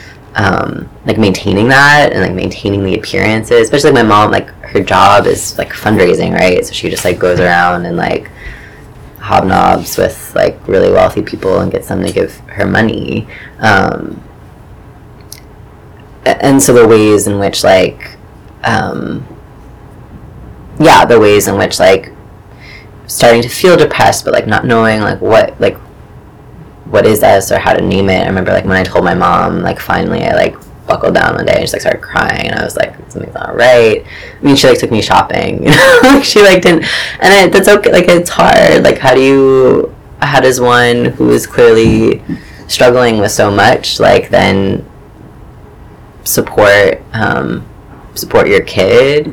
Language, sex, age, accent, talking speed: English, female, 20-39, American, 175 wpm